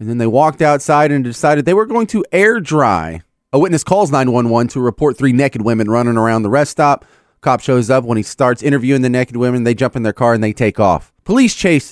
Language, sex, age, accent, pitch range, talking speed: English, male, 30-49, American, 125-155 Hz, 240 wpm